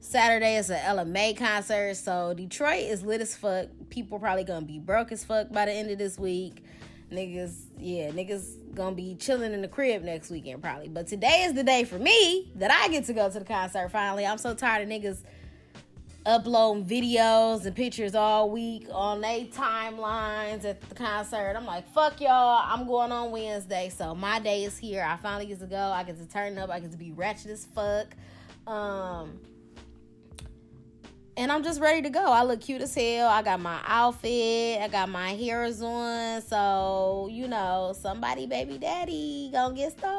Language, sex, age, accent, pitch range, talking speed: English, female, 20-39, American, 190-235 Hz, 195 wpm